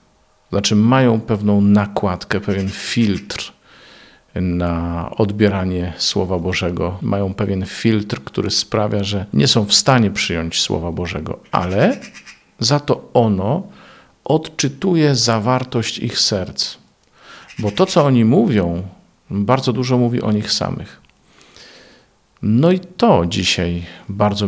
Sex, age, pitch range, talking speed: male, 50-69, 95-115 Hz, 115 wpm